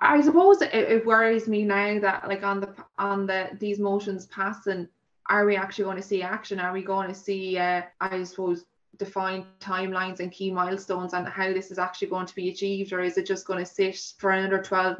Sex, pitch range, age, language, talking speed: female, 185-205 Hz, 20-39, English, 220 wpm